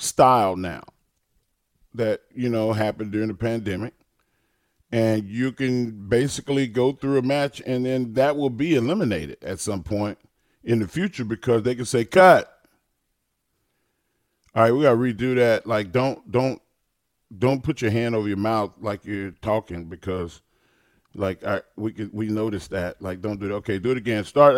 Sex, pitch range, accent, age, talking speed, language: male, 105-130 Hz, American, 40-59, 175 wpm, English